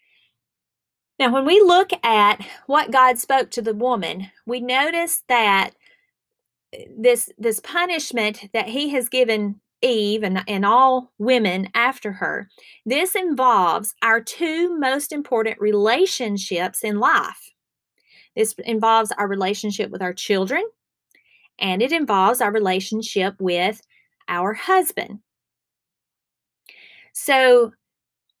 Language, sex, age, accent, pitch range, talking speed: English, female, 30-49, American, 200-265 Hz, 110 wpm